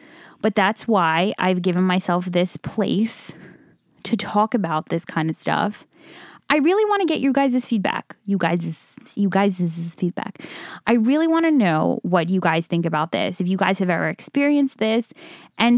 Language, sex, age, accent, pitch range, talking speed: English, female, 20-39, American, 170-220 Hz, 175 wpm